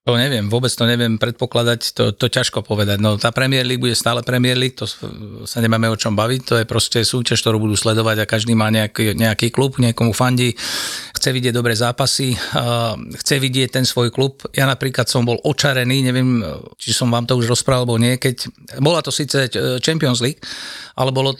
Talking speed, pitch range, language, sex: 195 wpm, 115-130 Hz, Slovak, male